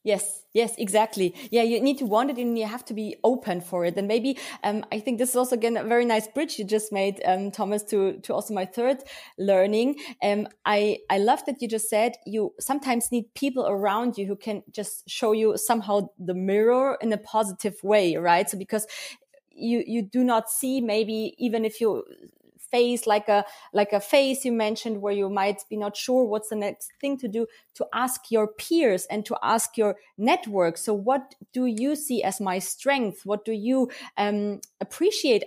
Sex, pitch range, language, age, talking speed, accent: female, 205-245 Hz, English, 20-39, 205 wpm, German